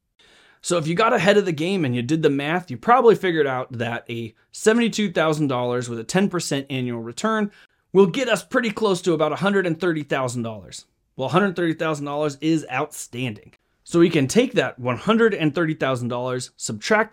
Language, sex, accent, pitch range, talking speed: English, male, American, 130-185 Hz, 155 wpm